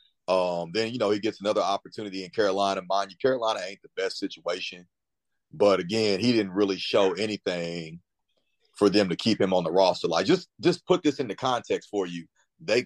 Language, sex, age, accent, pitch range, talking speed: English, male, 30-49, American, 90-115 Hz, 195 wpm